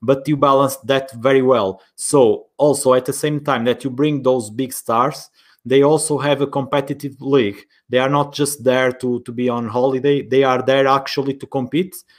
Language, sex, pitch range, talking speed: English, male, 120-140 Hz, 195 wpm